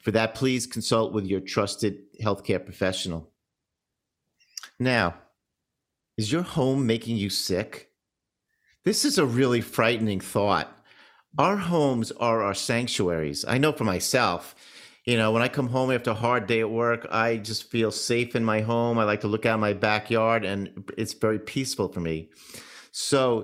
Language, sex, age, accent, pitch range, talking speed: English, male, 50-69, American, 105-135 Hz, 165 wpm